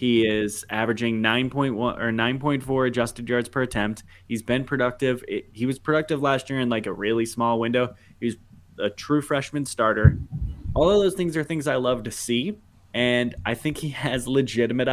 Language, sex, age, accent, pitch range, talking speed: English, male, 20-39, American, 105-130 Hz, 200 wpm